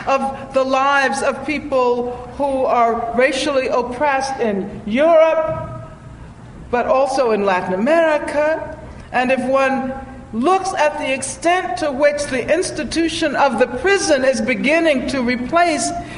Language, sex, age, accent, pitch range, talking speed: English, female, 60-79, American, 235-300 Hz, 125 wpm